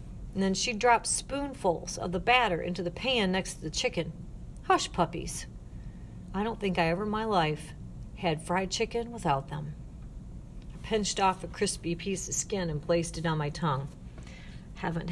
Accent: American